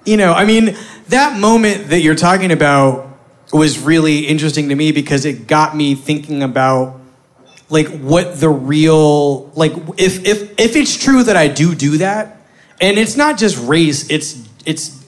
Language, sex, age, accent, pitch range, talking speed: English, male, 30-49, American, 140-185 Hz, 170 wpm